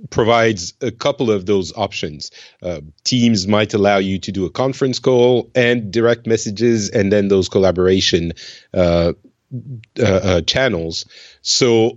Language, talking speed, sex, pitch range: English, 140 wpm, male, 95-115 Hz